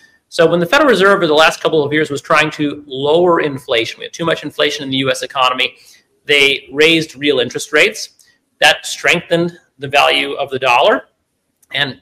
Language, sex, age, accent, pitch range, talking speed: English, male, 40-59, American, 145-195 Hz, 190 wpm